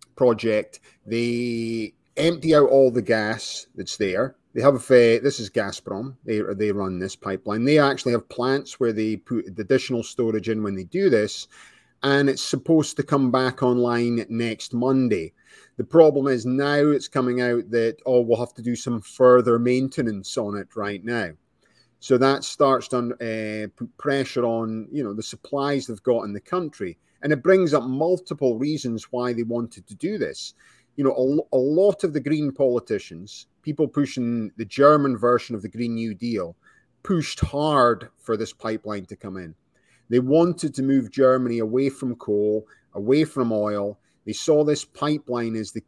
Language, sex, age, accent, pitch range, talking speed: English, male, 30-49, British, 115-140 Hz, 180 wpm